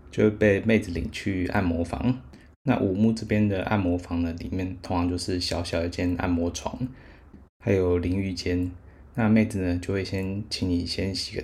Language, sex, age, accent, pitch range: Chinese, male, 20-39, native, 85-100 Hz